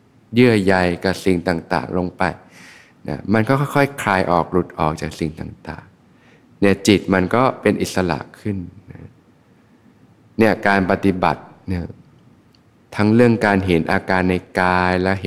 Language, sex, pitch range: Thai, male, 85-105 Hz